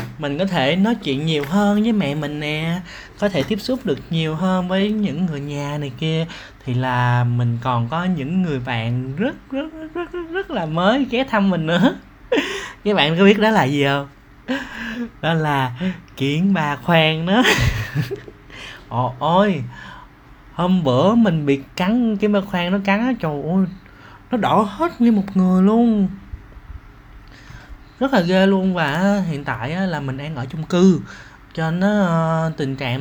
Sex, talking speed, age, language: male, 175 wpm, 20-39, Vietnamese